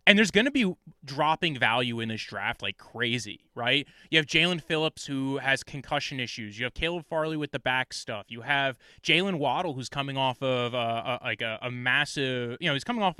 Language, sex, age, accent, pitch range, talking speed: English, male, 20-39, American, 130-175 Hz, 215 wpm